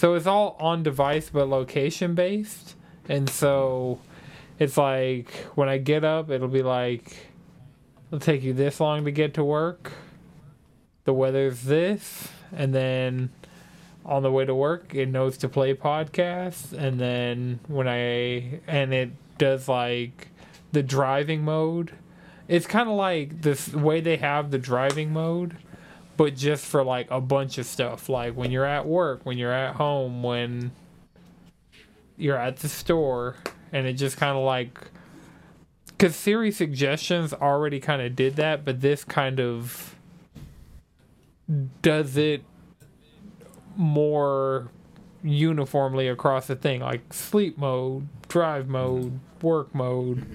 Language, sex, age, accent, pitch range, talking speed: English, male, 20-39, American, 130-160 Hz, 140 wpm